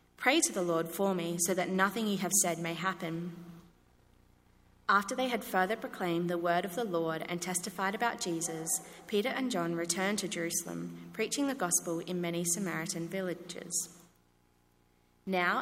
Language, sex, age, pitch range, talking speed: English, female, 20-39, 170-230 Hz, 160 wpm